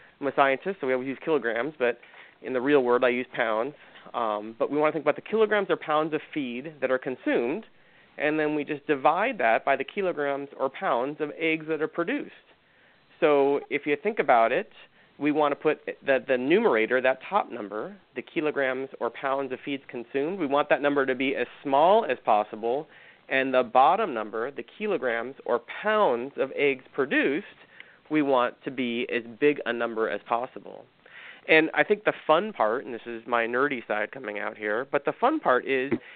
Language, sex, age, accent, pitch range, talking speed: English, male, 30-49, American, 125-160 Hz, 200 wpm